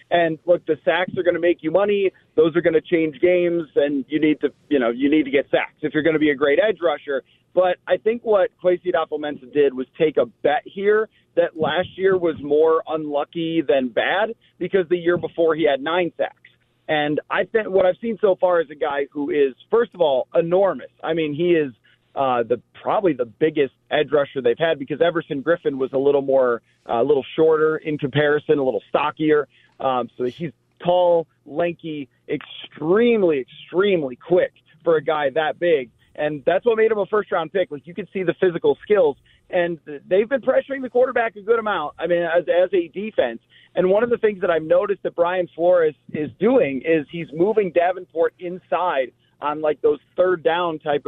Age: 30-49